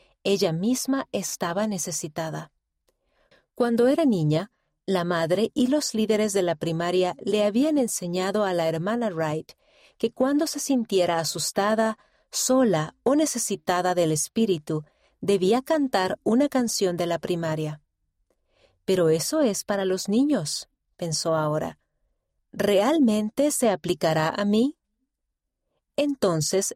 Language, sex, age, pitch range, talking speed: Spanish, female, 40-59, 170-245 Hz, 120 wpm